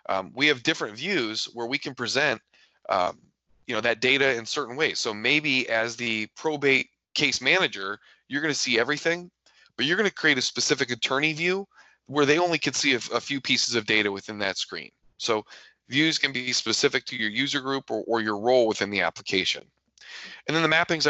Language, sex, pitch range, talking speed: English, male, 115-145 Hz, 205 wpm